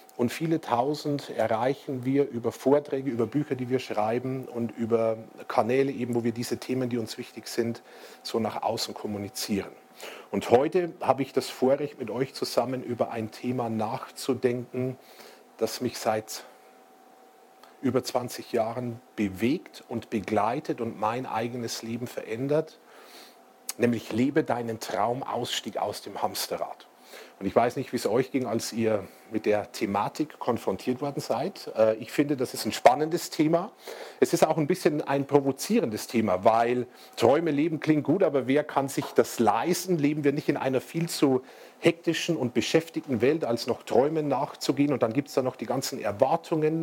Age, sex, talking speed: 40-59, male, 165 wpm